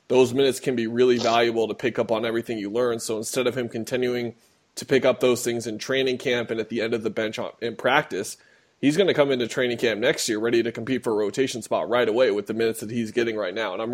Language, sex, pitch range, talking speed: English, male, 115-135 Hz, 270 wpm